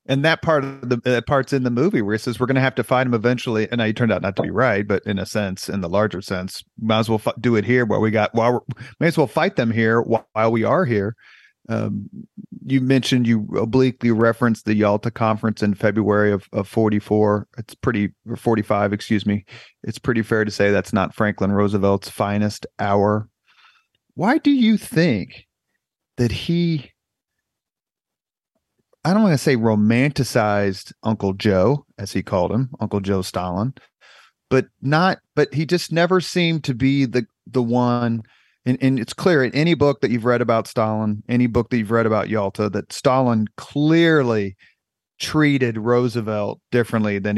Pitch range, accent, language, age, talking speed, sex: 105-130 Hz, American, English, 40-59, 185 wpm, male